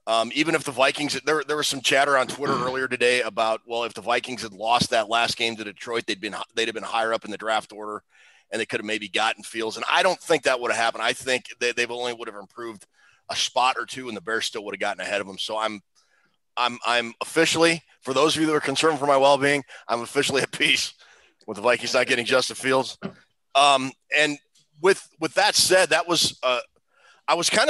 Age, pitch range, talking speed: 30-49, 115-145 Hz, 245 wpm